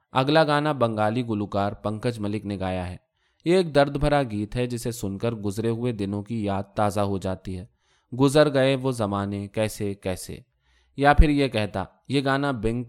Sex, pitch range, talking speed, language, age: male, 100-140 Hz, 185 wpm, Urdu, 20-39